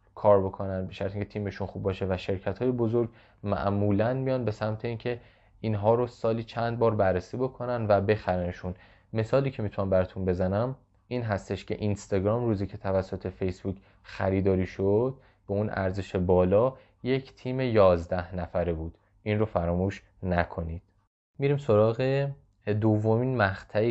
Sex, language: male, Persian